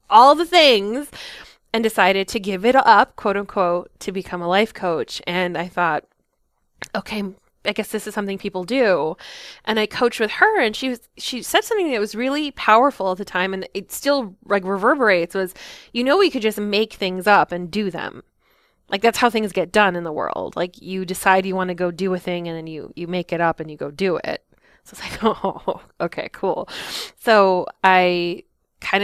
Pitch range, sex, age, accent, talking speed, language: 180-210 Hz, female, 20-39, American, 210 wpm, English